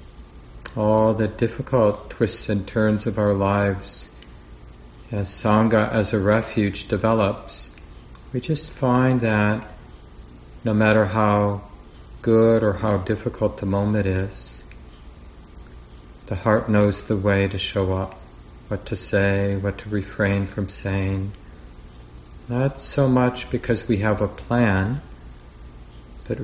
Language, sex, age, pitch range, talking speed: English, male, 40-59, 85-105 Hz, 125 wpm